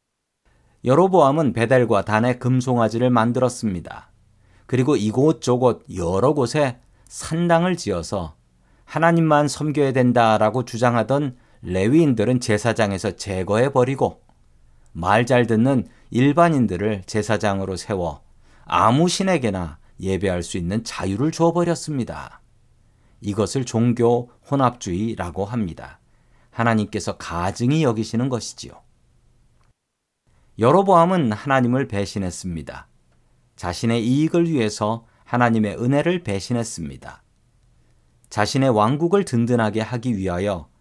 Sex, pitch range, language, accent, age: male, 100-135 Hz, Korean, native, 40-59